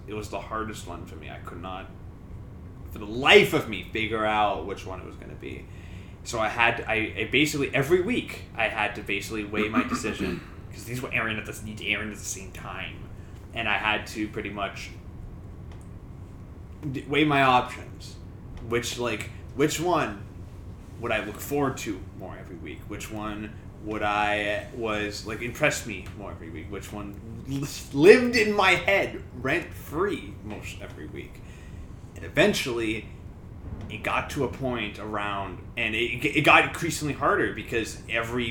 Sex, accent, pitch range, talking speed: male, American, 100-120 Hz, 165 wpm